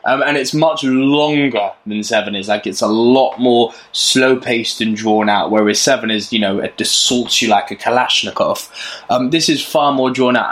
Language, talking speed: English, 200 wpm